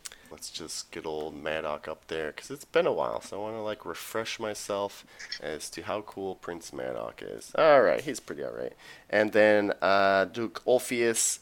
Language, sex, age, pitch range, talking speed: English, male, 30-49, 100-130 Hz, 195 wpm